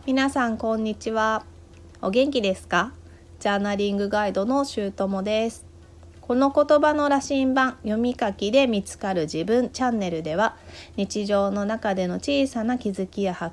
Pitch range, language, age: 165-245 Hz, Japanese, 30-49